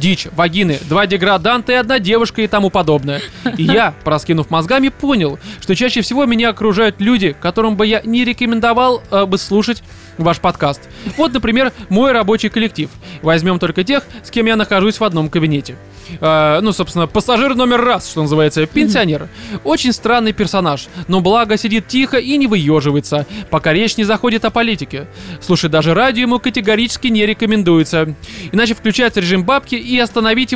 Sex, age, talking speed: male, 20-39, 165 wpm